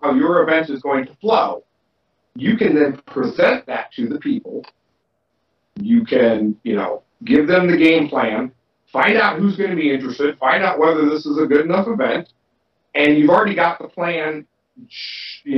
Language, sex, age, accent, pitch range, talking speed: English, male, 50-69, American, 135-225 Hz, 180 wpm